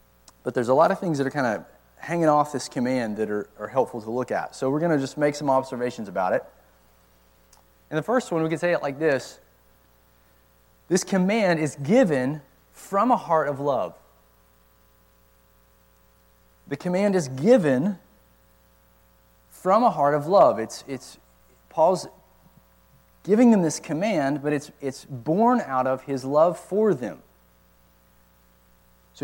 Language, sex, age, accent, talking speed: English, male, 30-49, American, 160 wpm